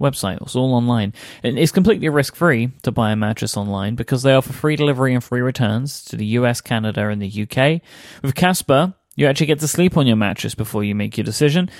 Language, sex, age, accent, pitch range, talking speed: English, male, 20-39, British, 115-145 Hz, 230 wpm